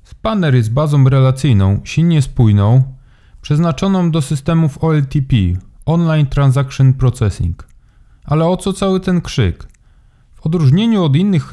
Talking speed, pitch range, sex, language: 120 wpm, 125-160 Hz, male, Polish